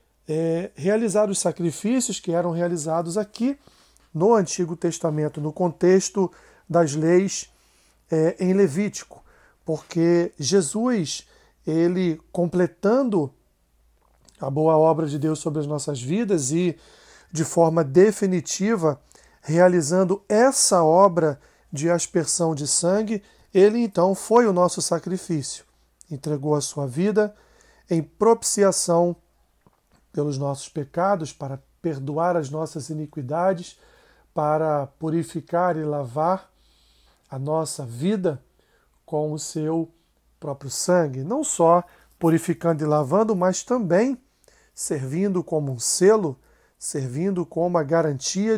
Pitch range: 155-190 Hz